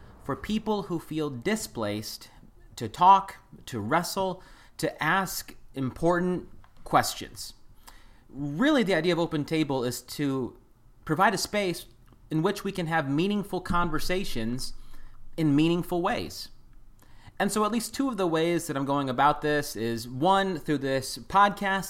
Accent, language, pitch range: American, English, 125-175 Hz